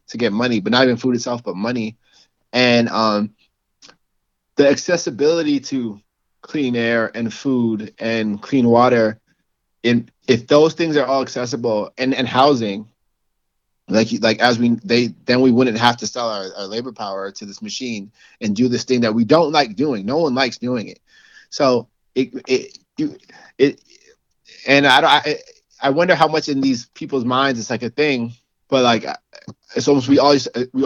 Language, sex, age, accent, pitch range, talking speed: English, male, 30-49, American, 115-140 Hz, 175 wpm